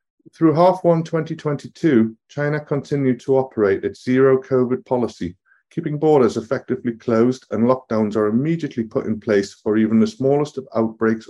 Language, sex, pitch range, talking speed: English, male, 115-140 Hz, 155 wpm